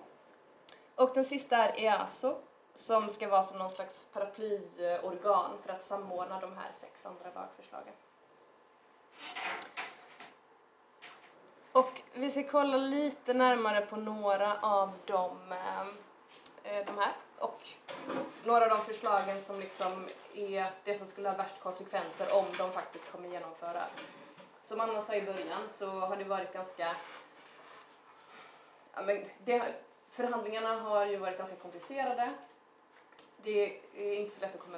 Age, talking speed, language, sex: 20-39, 135 wpm, Swedish, female